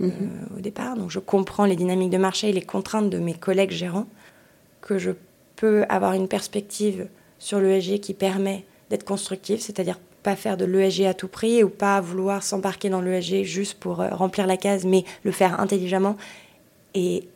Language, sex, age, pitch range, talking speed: French, female, 20-39, 185-205 Hz, 180 wpm